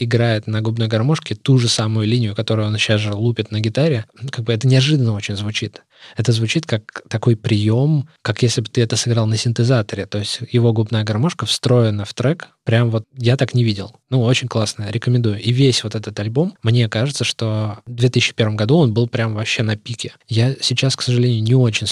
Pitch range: 110-125 Hz